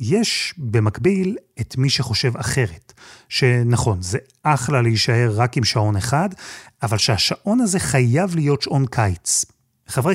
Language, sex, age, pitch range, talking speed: Hebrew, male, 40-59, 115-165 Hz, 130 wpm